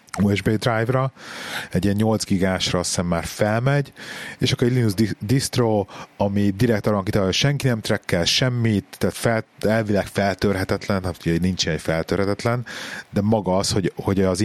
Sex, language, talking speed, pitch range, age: male, Hungarian, 160 wpm, 85-110 Hz, 30-49